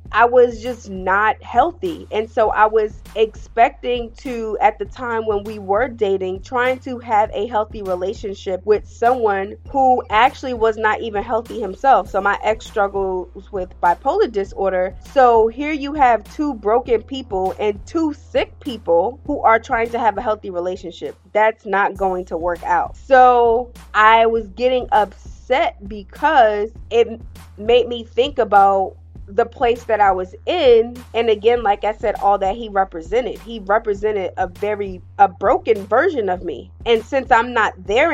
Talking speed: 165 wpm